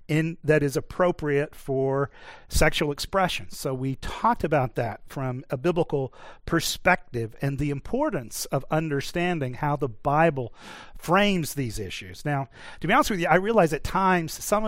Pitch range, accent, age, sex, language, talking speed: 140-180 Hz, American, 40-59, male, English, 155 wpm